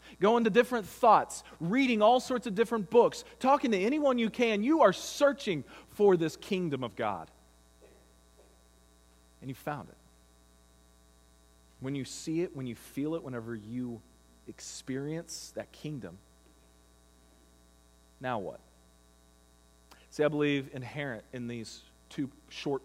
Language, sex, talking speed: English, male, 130 wpm